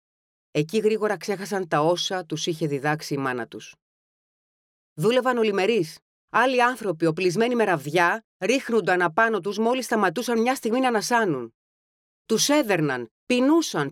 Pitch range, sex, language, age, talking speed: 155-215 Hz, female, Greek, 30-49, 135 wpm